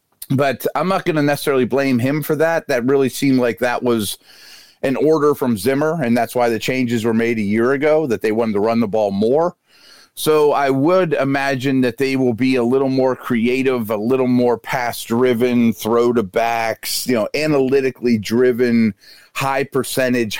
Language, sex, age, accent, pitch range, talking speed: English, male, 40-59, American, 115-140 Hz, 190 wpm